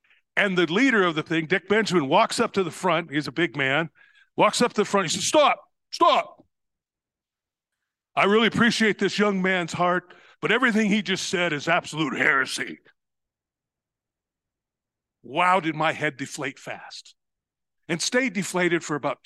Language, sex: English, male